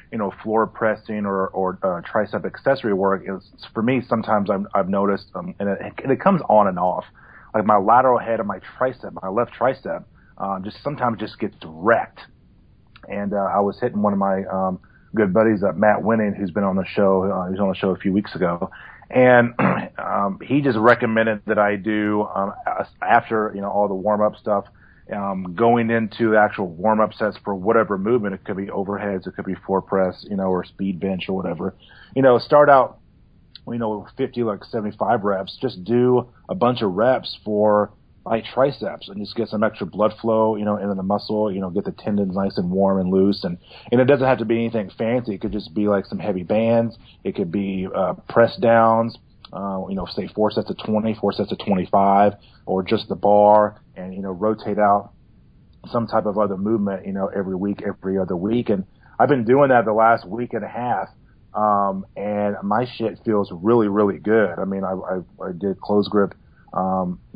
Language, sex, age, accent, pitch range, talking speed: English, male, 30-49, American, 95-110 Hz, 210 wpm